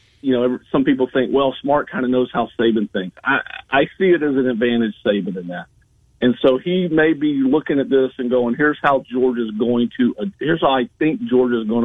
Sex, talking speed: male, 235 wpm